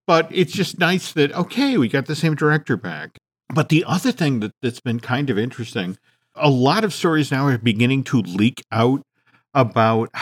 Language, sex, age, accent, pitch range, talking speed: English, male, 50-69, American, 115-150 Hz, 190 wpm